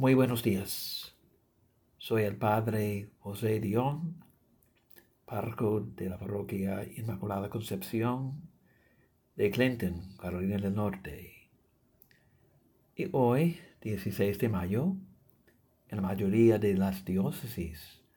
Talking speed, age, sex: 100 wpm, 60-79, male